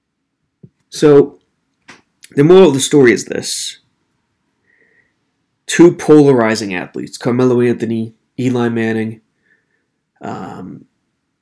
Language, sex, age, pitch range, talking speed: English, male, 30-49, 110-140 Hz, 85 wpm